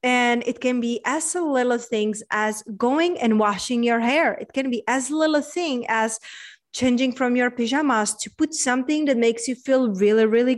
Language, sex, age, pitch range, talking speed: English, female, 30-49, 230-290 Hz, 195 wpm